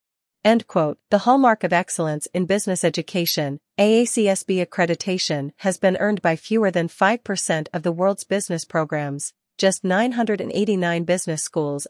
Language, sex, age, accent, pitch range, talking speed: English, female, 40-59, American, 160-200 Hz, 125 wpm